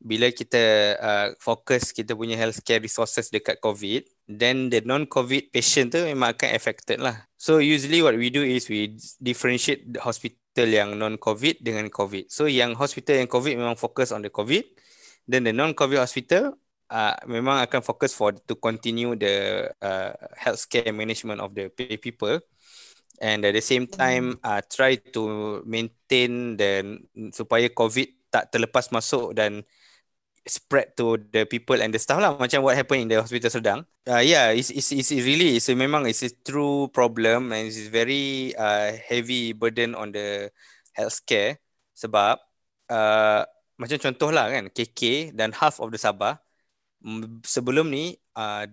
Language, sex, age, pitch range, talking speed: Malay, male, 20-39, 110-130 Hz, 155 wpm